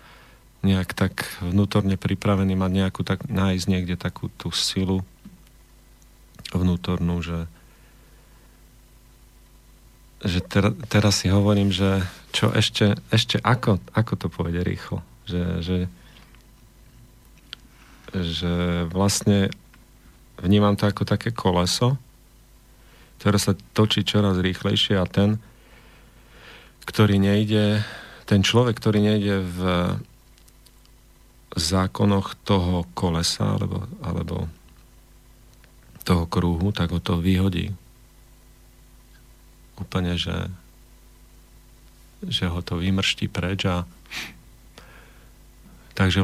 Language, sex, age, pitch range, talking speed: Slovak, male, 40-59, 90-110 Hz, 90 wpm